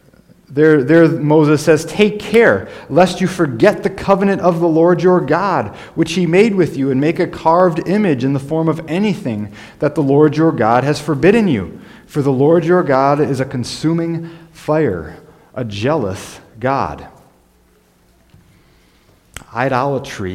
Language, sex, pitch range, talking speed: English, male, 115-160 Hz, 155 wpm